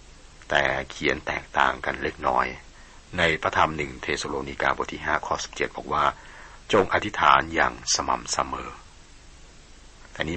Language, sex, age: Thai, male, 60-79